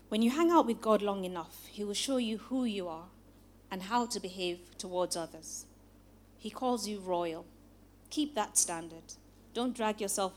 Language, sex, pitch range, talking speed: English, female, 170-215 Hz, 180 wpm